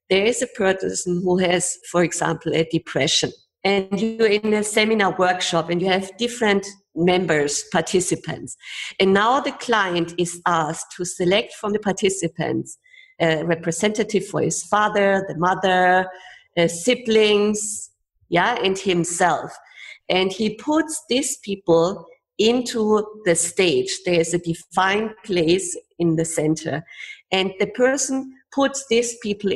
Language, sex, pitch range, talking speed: English, female, 175-215 Hz, 135 wpm